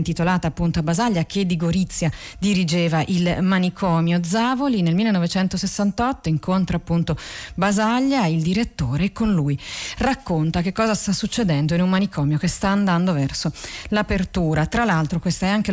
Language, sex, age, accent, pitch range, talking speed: Italian, female, 30-49, native, 165-210 Hz, 150 wpm